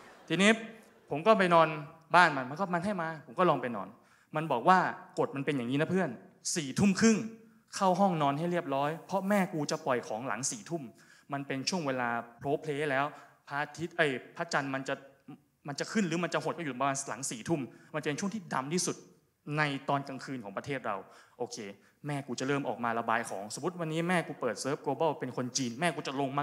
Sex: male